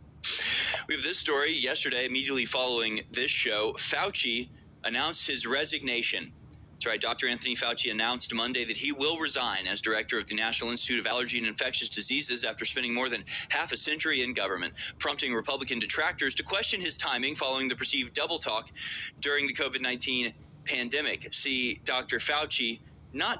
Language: English